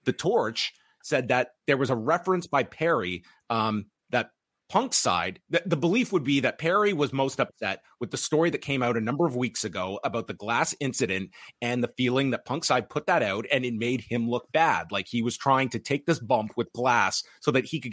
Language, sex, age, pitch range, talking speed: English, male, 30-49, 110-145 Hz, 230 wpm